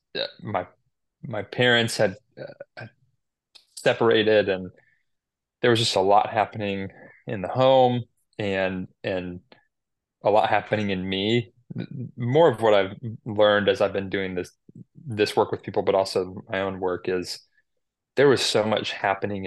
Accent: American